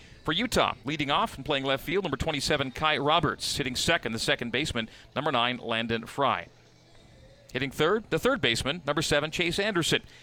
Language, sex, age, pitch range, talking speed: English, male, 40-59, 125-155 Hz, 175 wpm